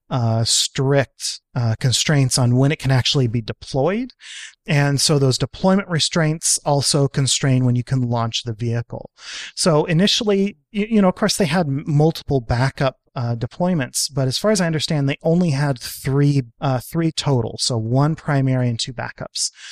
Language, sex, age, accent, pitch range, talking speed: English, male, 30-49, American, 125-155 Hz, 170 wpm